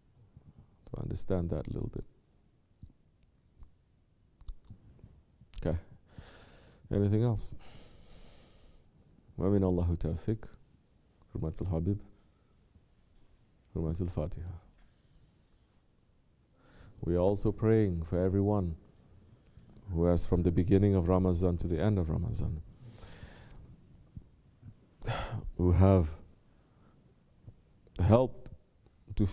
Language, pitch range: English, 90-110 Hz